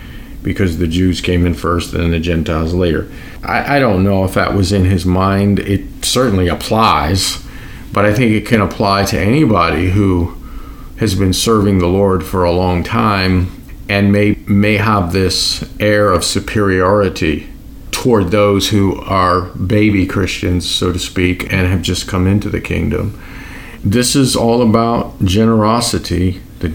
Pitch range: 90-110 Hz